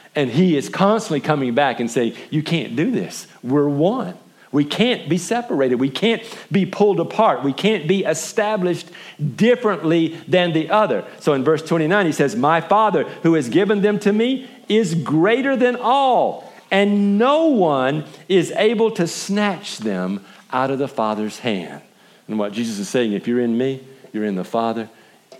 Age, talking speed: 50-69, 175 wpm